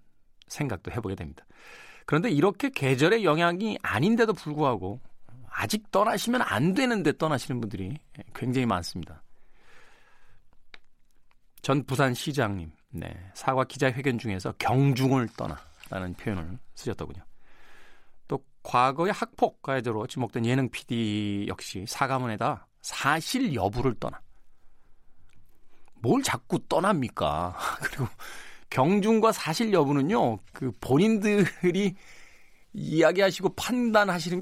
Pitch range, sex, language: 110-165 Hz, male, Korean